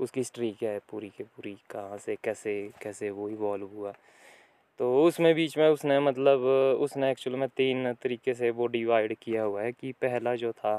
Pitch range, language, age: 110-135 Hz, Hindi, 20-39